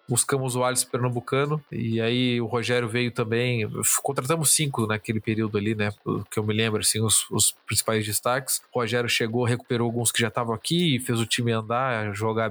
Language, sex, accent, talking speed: Portuguese, male, Brazilian, 195 wpm